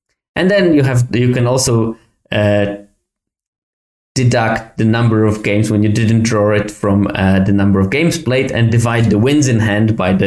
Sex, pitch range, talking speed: male, 105-125 Hz, 195 wpm